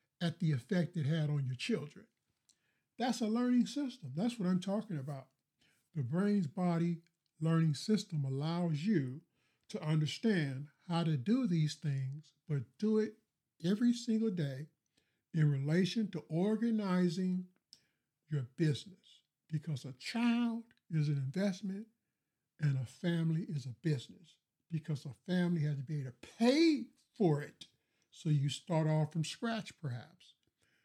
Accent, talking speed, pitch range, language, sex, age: American, 140 wpm, 145-185 Hz, English, male, 50-69